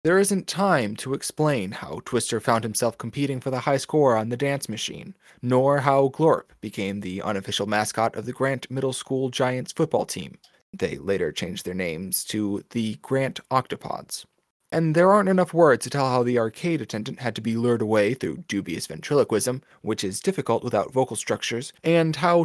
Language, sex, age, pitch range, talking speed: English, male, 20-39, 110-150 Hz, 185 wpm